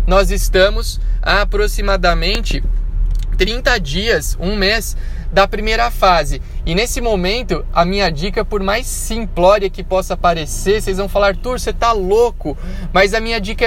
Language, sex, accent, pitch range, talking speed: Portuguese, male, Brazilian, 185-230 Hz, 145 wpm